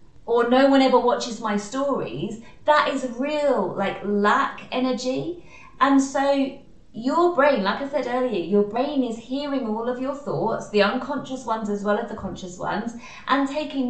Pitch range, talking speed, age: 205-265 Hz, 175 wpm, 20-39